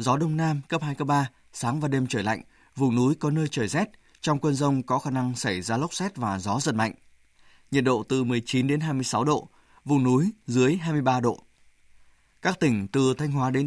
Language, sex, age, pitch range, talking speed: Vietnamese, male, 20-39, 125-150 Hz, 220 wpm